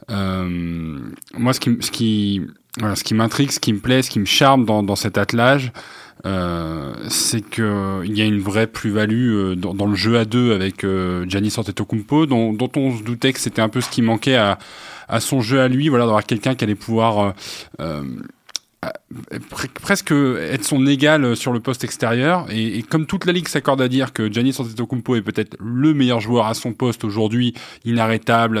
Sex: male